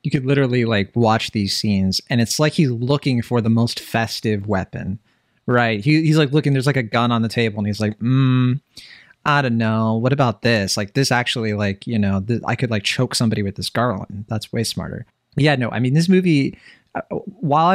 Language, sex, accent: English, male, American